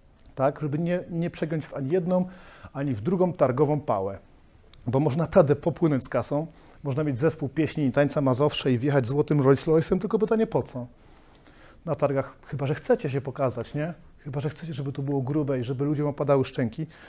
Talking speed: 185 wpm